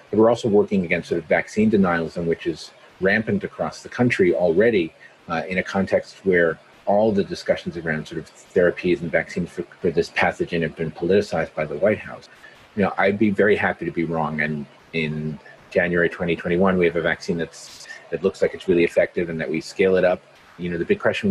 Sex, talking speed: male, 210 wpm